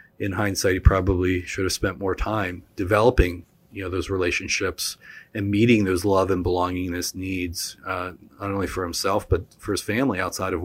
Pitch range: 95-110 Hz